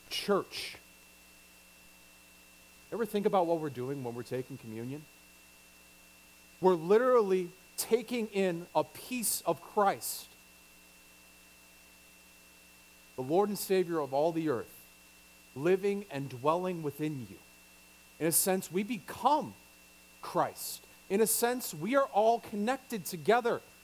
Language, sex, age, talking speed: English, male, 40-59, 115 wpm